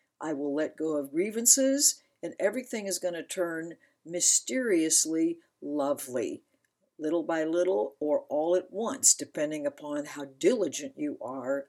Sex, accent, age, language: female, American, 60-79, English